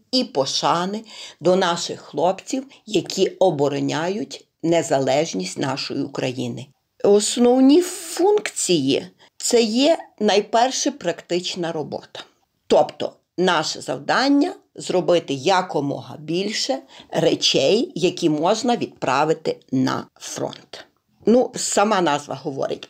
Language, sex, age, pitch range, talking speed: Ukrainian, female, 50-69, 160-245 Hz, 90 wpm